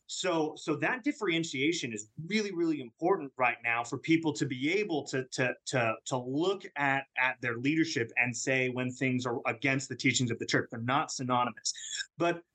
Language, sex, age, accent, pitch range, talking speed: English, male, 30-49, American, 130-165 Hz, 185 wpm